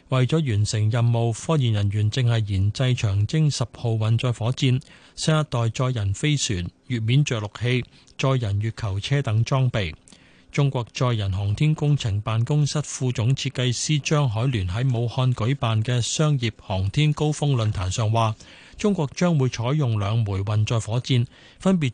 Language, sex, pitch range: Chinese, male, 110-140 Hz